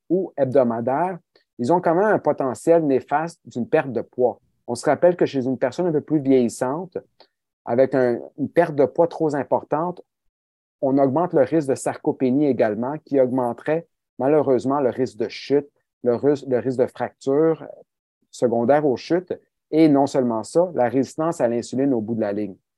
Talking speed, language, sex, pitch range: 175 wpm, French, male, 125-155 Hz